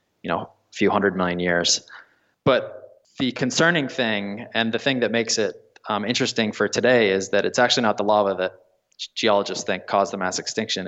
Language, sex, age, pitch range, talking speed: English, male, 20-39, 105-125 Hz, 195 wpm